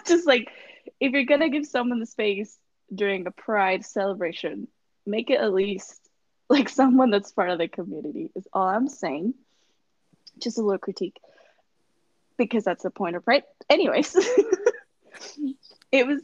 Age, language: 20-39, English